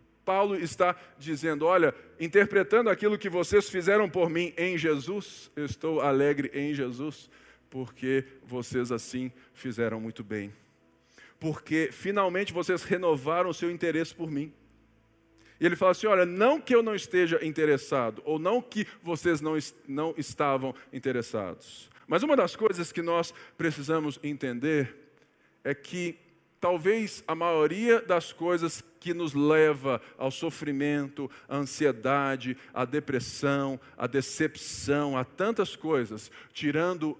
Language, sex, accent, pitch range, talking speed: Portuguese, male, Brazilian, 135-175 Hz, 130 wpm